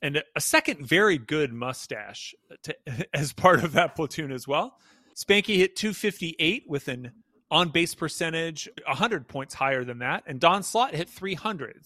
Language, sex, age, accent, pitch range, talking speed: English, male, 30-49, American, 140-195 Hz, 155 wpm